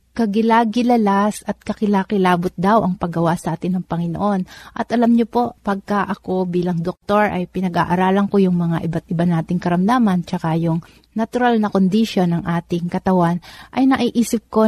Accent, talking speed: native, 155 wpm